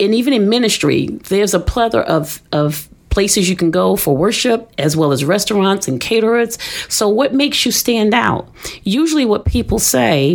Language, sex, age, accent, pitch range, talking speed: English, female, 40-59, American, 145-195 Hz, 180 wpm